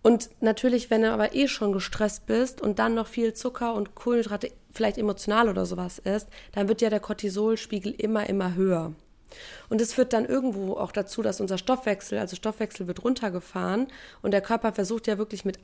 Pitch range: 195-230 Hz